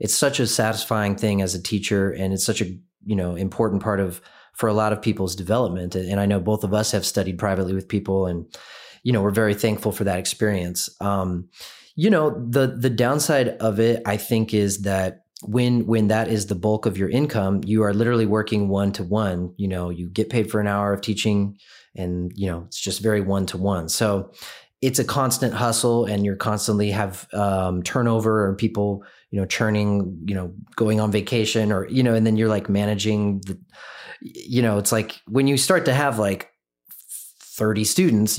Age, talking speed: 30-49, 200 wpm